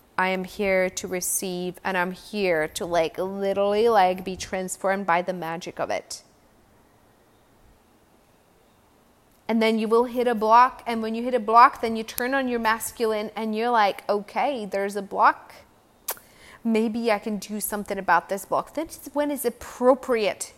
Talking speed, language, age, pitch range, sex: 165 wpm, English, 20-39, 205-240 Hz, female